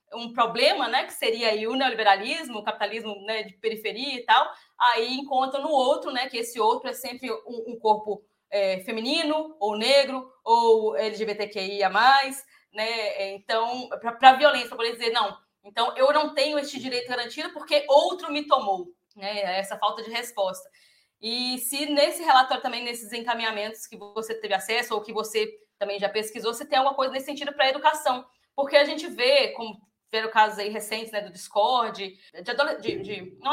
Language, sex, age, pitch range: Portuguese, female, 20-39, 220-295 Hz